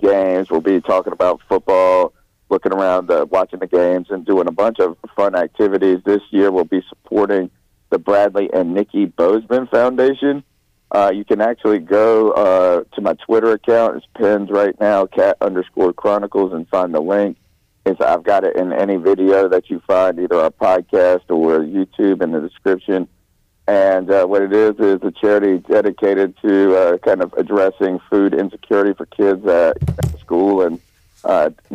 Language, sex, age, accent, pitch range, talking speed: English, male, 50-69, American, 95-115 Hz, 175 wpm